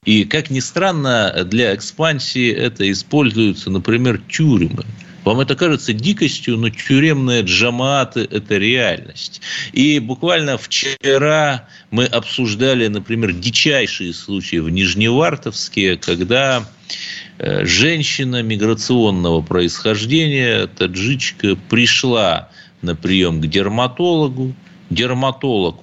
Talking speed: 95 wpm